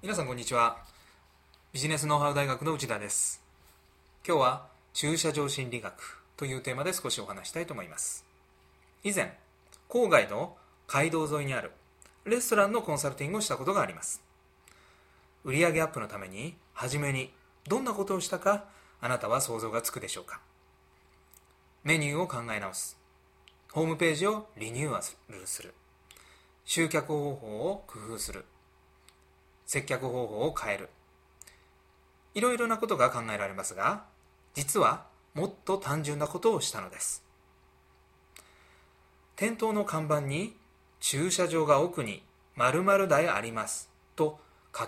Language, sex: Japanese, male